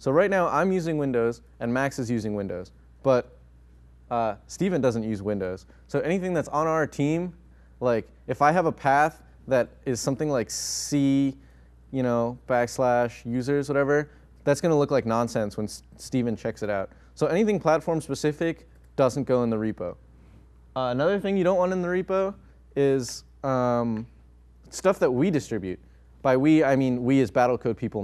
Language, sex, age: English, male, 20-39